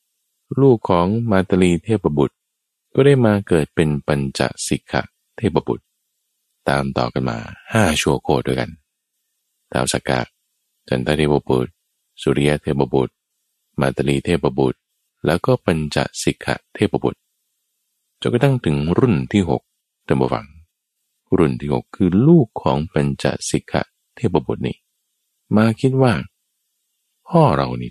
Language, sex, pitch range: Thai, male, 70-115 Hz